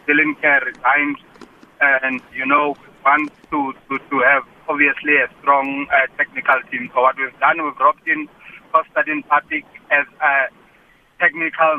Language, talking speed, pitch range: English, 150 wpm, 145-175 Hz